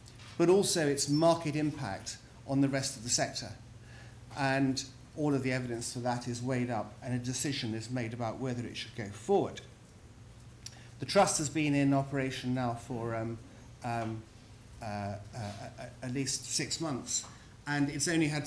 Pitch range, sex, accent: 120-155 Hz, male, British